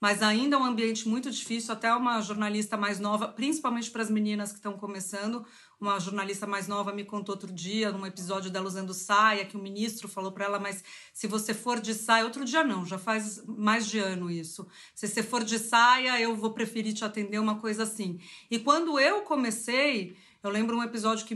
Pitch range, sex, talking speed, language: 210-265 Hz, female, 215 wpm, Portuguese